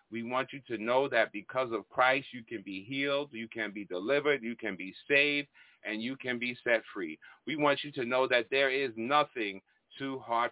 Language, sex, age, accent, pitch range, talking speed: English, male, 40-59, American, 115-140 Hz, 215 wpm